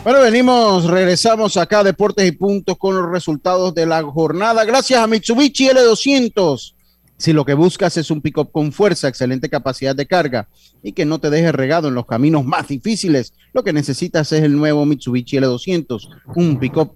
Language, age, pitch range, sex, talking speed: Spanish, 40-59, 140-175 Hz, male, 180 wpm